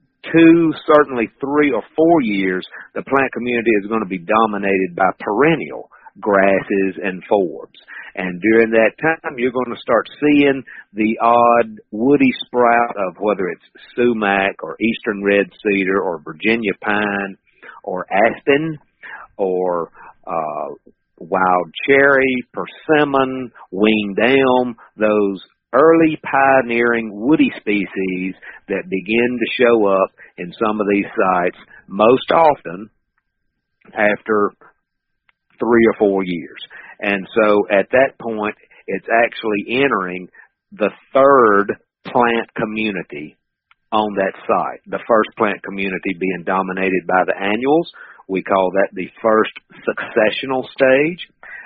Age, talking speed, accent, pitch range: 50-69, 120 wpm, American, 95-130 Hz